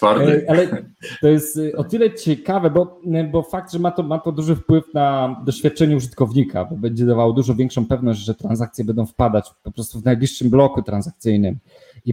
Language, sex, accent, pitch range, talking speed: Polish, male, native, 110-140 Hz, 180 wpm